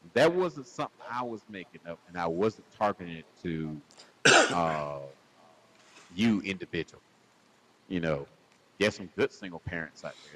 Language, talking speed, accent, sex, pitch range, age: English, 145 wpm, American, male, 90-115 Hz, 40-59